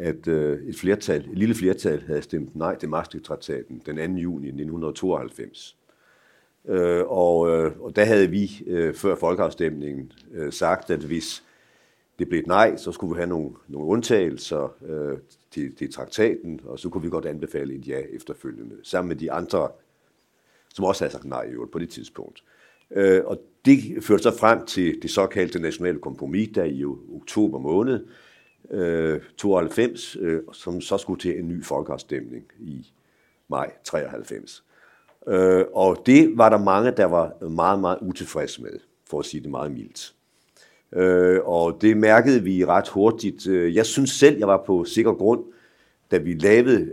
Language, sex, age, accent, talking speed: Danish, male, 60-79, native, 150 wpm